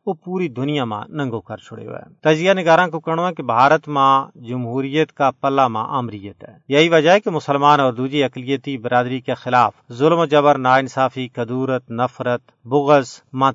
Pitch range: 120-150 Hz